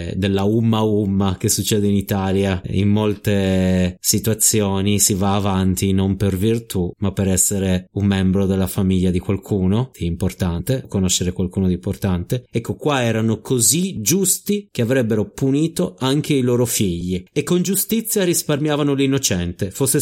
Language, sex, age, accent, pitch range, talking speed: Italian, male, 30-49, native, 100-130 Hz, 145 wpm